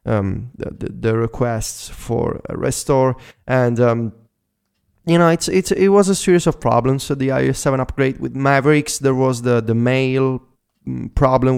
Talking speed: 175 wpm